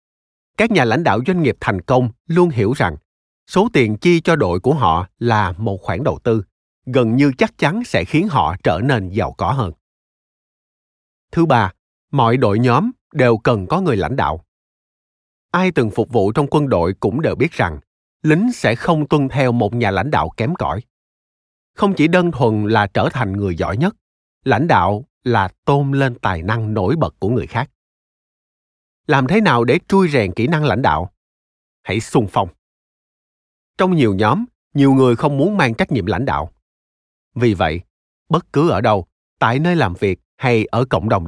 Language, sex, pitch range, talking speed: Vietnamese, male, 90-135 Hz, 190 wpm